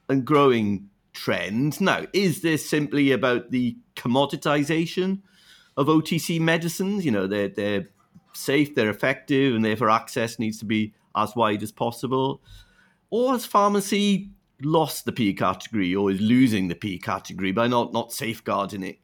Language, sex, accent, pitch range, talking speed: English, male, British, 105-150 Hz, 150 wpm